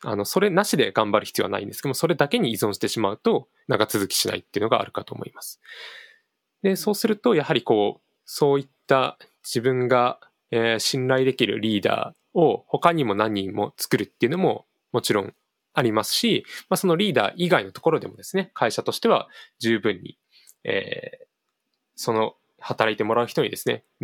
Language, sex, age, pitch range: Japanese, male, 20-39, 130-210 Hz